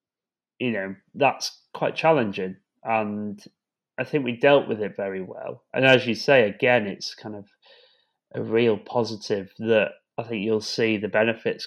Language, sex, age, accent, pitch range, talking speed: English, male, 20-39, British, 105-130 Hz, 165 wpm